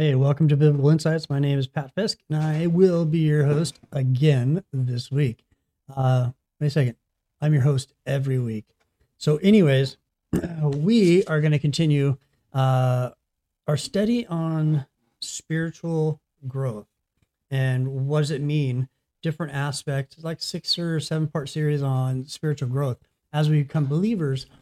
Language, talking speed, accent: English, 150 wpm, American